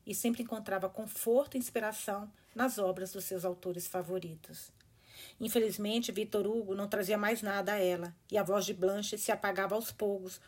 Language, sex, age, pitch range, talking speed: Portuguese, female, 40-59, 185-225 Hz, 170 wpm